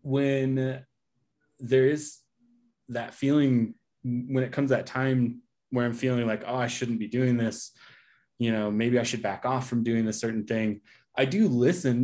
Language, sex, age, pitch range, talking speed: English, male, 20-39, 110-135 Hz, 180 wpm